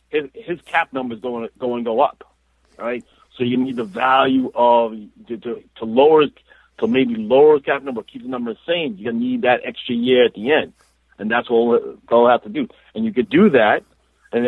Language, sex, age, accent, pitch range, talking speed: English, male, 50-69, American, 120-150 Hz, 205 wpm